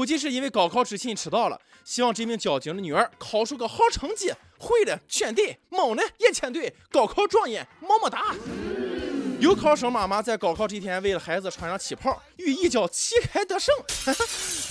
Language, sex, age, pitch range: Chinese, male, 20-39, 205-345 Hz